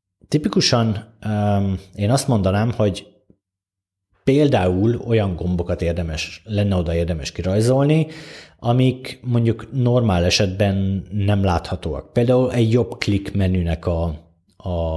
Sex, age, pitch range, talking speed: male, 30-49, 85-110 Hz, 105 wpm